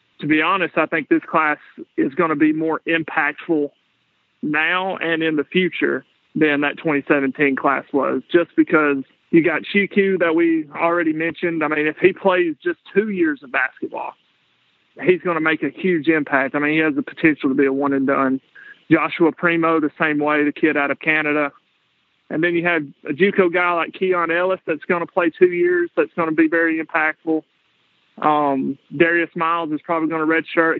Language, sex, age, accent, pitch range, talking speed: English, male, 30-49, American, 150-170 Hz, 195 wpm